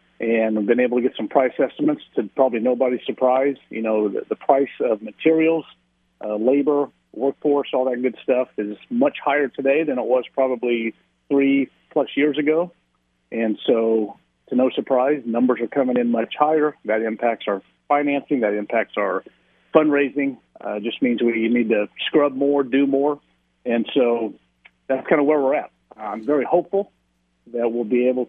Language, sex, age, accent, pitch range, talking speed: English, male, 40-59, American, 110-145 Hz, 175 wpm